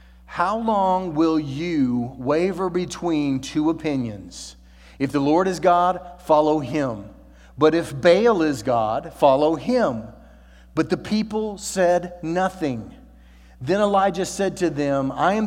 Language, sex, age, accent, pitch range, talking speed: English, male, 40-59, American, 130-170 Hz, 130 wpm